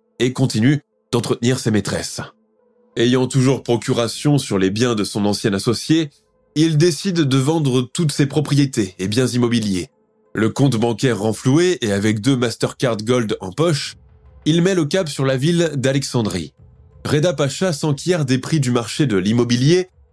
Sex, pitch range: male, 115-155 Hz